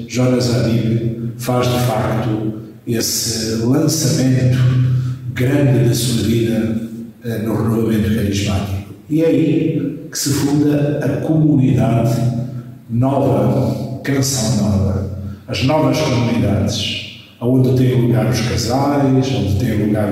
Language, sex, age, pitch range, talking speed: Portuguese, male, 50-69, 115-130 Hz, 105 wpm